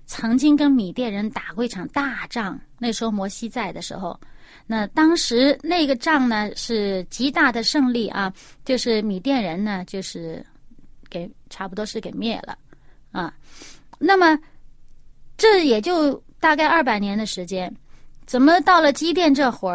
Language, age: Chinese, 30-49